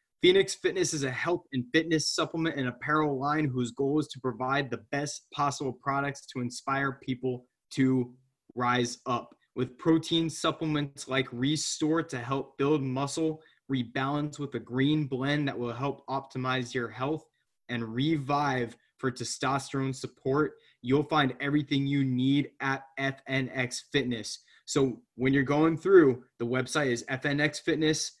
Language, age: English, 20-39